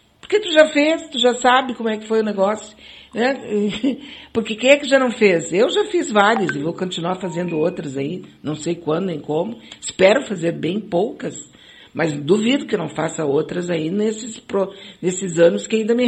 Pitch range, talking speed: 155-235 Hz, 200 wpm